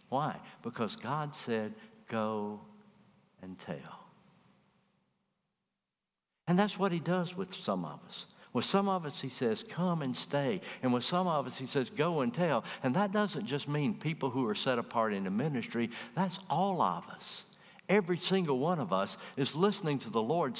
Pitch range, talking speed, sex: 135-205 Hz, 180 wpm, male